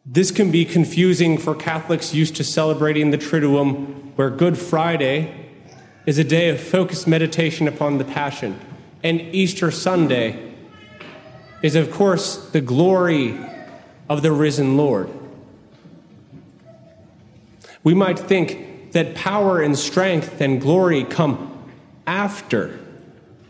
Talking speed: 115 wpm